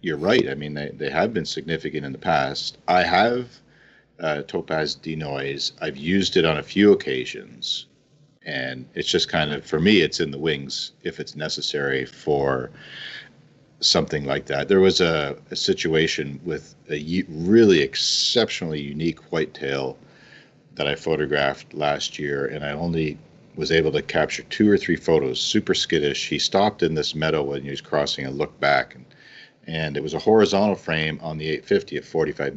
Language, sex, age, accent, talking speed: English, male, 40-59, American, 175 wpm